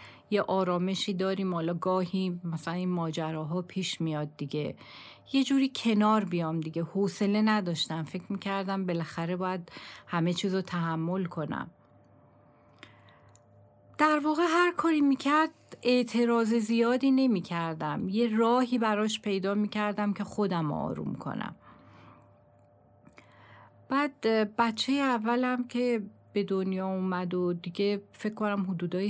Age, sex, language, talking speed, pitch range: 40-59, female, Persian, 110 wpm, 165-210 Hz